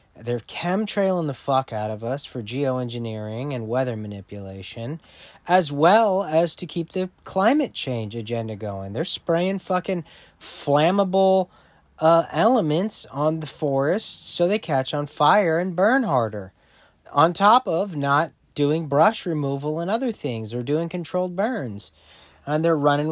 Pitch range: 135-180 Hz